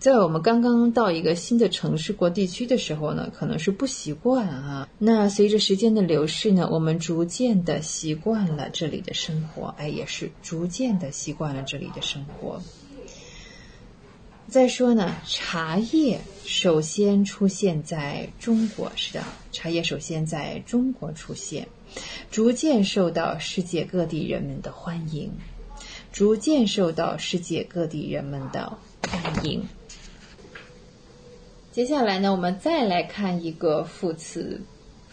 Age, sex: 30-49, female